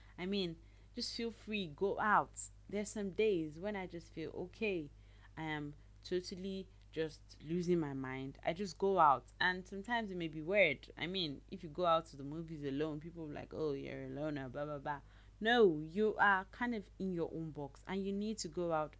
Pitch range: 135-180 Hz